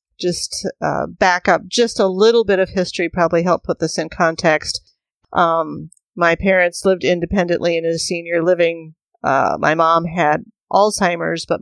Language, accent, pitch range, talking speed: English, American, 165-195 Hz, 160 wpm